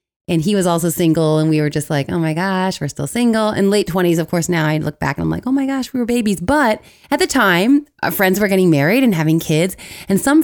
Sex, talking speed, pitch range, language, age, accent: female, 275 wpm, 180-265 Hz, English, 20-39, American